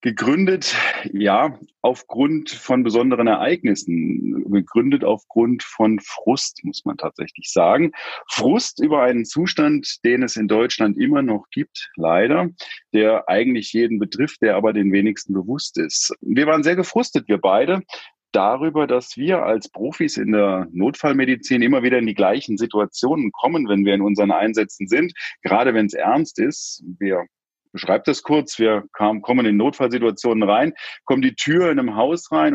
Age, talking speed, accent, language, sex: 40-59, 155 wpm, German, German, male